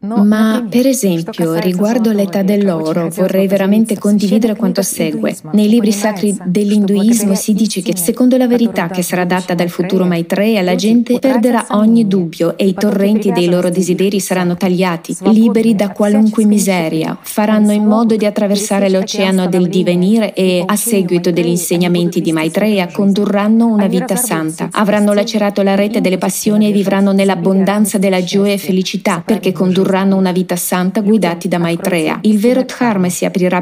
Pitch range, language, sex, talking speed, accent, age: 180-215 Hz, Italian, female, 160 wpm, native, 20-39